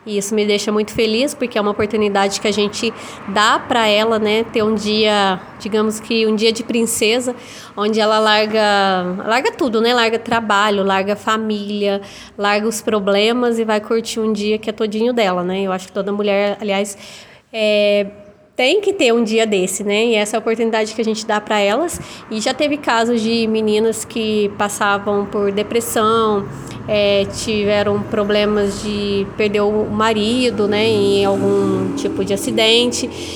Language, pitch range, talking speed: Portuguese, 210-235 Hz, 175 wpm